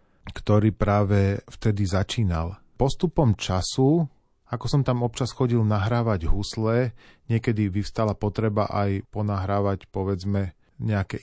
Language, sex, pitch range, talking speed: Slovak, male, 95-115 Hz, 105 wpm